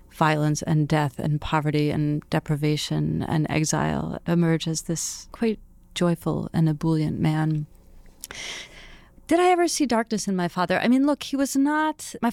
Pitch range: 160-220 Hz